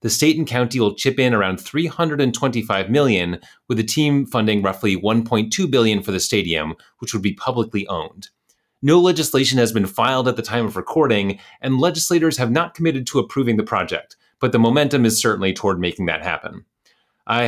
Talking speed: 185 wpm